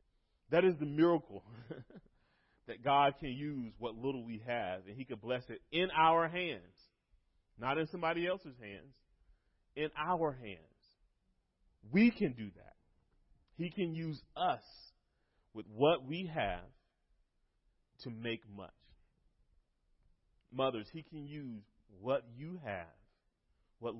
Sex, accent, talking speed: male, American, 130 wpm